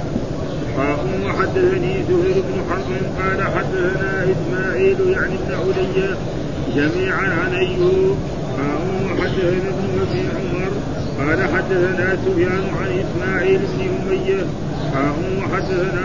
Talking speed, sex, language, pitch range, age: 95 wpm, male, Arabic, 180-190 Hz, 50-69